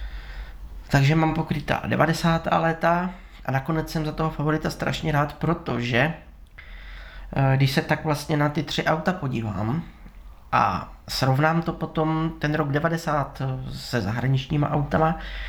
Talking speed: 130 wpm